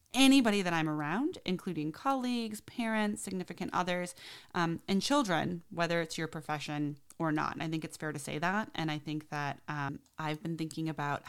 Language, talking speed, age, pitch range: English, 185 wpm, 30-49, 150-180 Hz